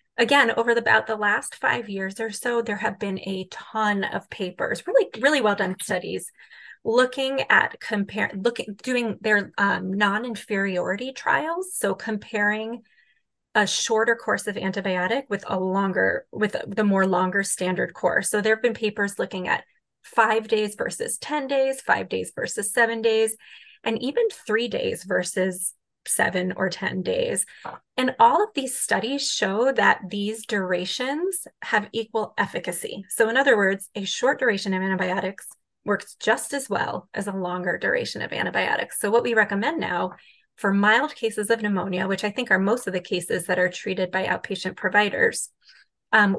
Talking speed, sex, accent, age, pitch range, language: 165 wpm, female, American, 30-49, 190-235 Hz, English